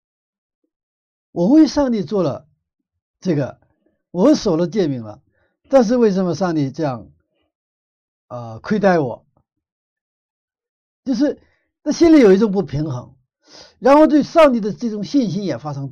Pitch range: 125-180 Hz